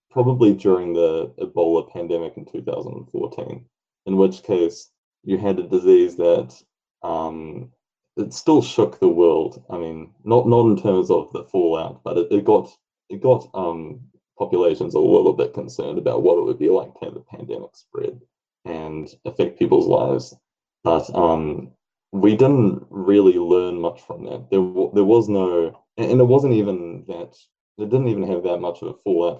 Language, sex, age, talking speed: English, male, 20-39, 180 wpm